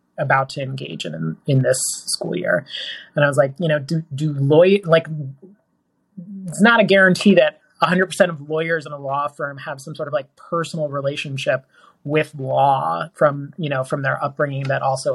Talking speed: 195 wpm